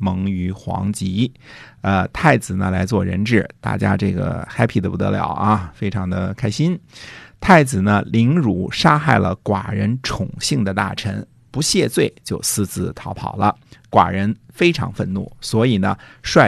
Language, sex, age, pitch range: Chinese, male, 50-69, 100-130 Hz